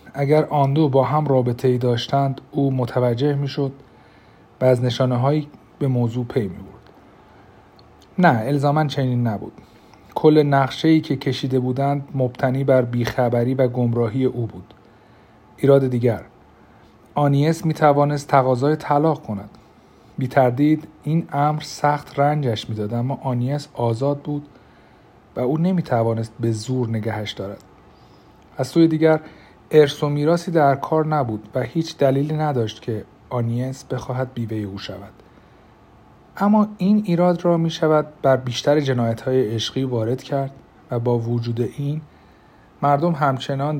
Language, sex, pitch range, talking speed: Persian, male, 115-145 Hz, 135 wpm